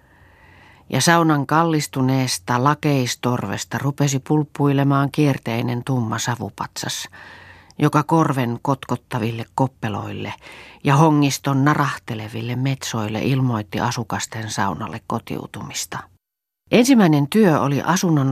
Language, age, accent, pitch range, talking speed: Finnish, 40-59, native, 110-140 Hz, 80 wpm